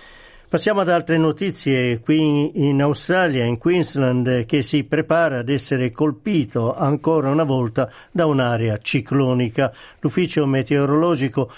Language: Italian